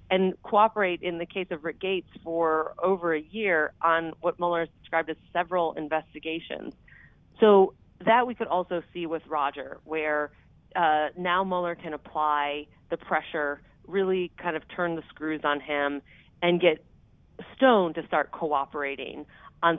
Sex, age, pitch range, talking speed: female, 40-59, 150-180 Hz, 155 wpm